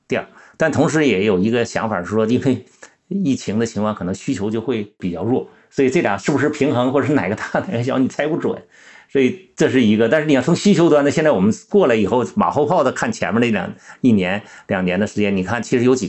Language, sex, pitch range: Chinese, male, 105-150 Hz